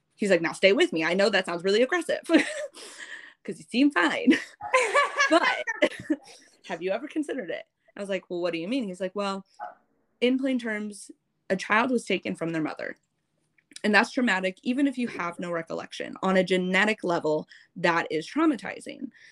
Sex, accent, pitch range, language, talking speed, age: female, American, 165-205 Hz, English, 185 wpm, 20-39